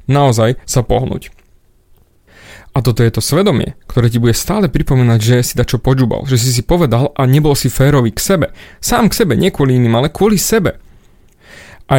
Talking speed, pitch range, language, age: 185 wpm, 125-165 Hz, Slovak, 30-49